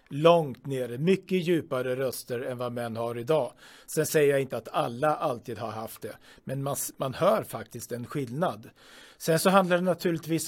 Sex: male